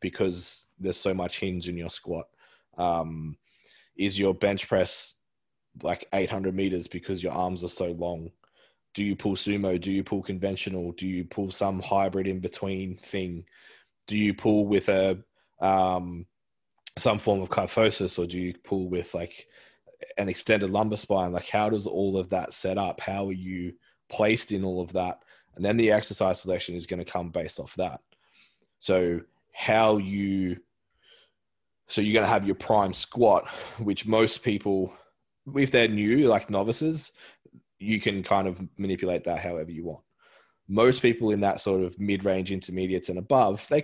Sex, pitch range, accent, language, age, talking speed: male, 90-105 Hz, Australian, English, 20-39, 170 wpm